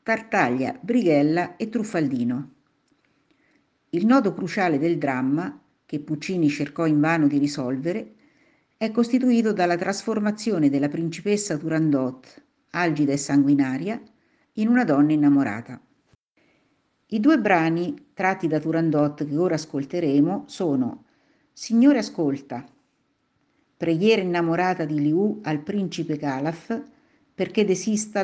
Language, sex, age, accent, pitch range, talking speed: Italian, female, 50-69, native, 150-210 Hz, 110 wpm